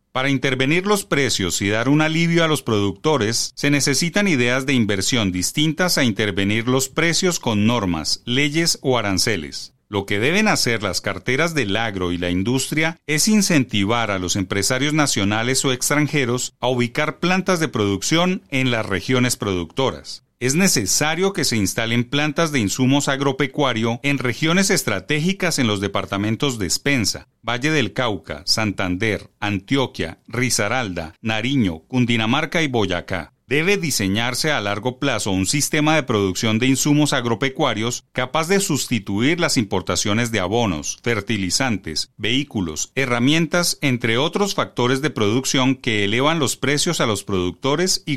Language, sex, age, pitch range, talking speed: Spanish, male, 40-59, 105-150 Hz, 145 wpm